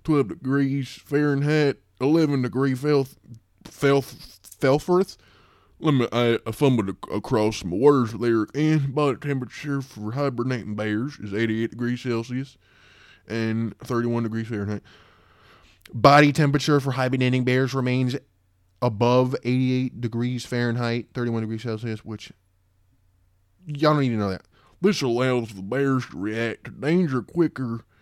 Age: 20-39